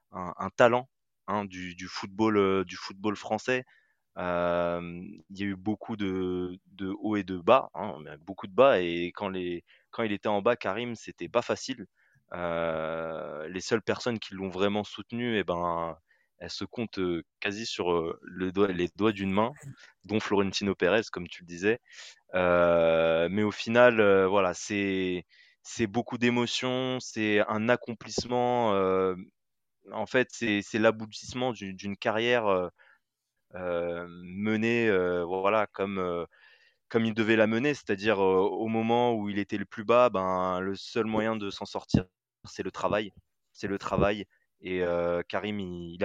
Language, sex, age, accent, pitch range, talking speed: French, male, 20-39, French, 90-110 Hz, 170 wpm